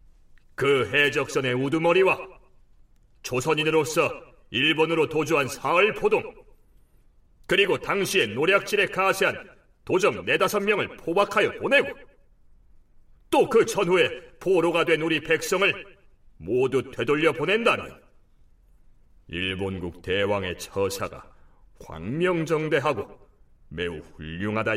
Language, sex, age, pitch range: Korean, male, 40-59, 105-160 Hz